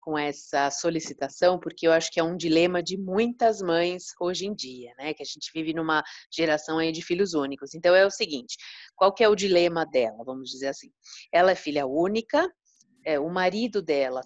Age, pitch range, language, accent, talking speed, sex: 30-49, 170-225 Hz, Portuguese, Brazilian, 200 wpm, female